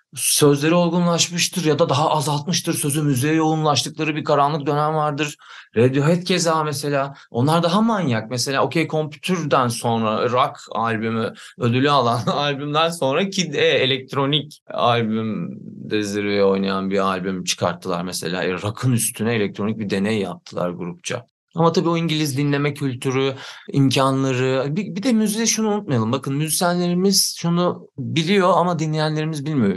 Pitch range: 120-160 Hz